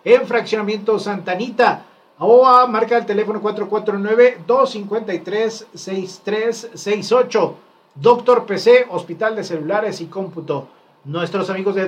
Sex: male